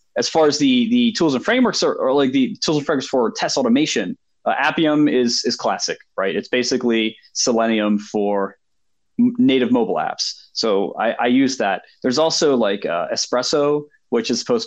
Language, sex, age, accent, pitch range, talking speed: English, male, 20-39, American, 110-155 Hz, 185 wpm